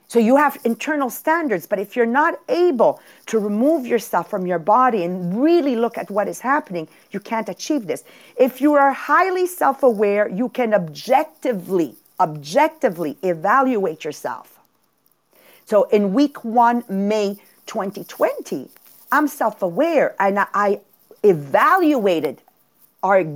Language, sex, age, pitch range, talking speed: English, female, 50-69, 190-290 Hz, 130 wpm